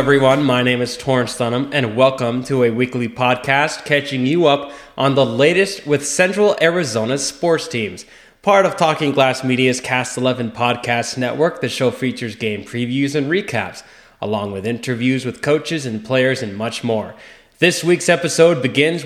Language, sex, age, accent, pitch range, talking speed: English, male, 20-39, American, 120-155 Hz, 165 wpm